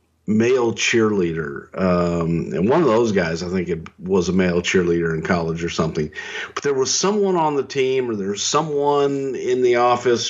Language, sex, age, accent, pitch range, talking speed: English, male, 50-69, American, 105-145 Hz, 185 wpm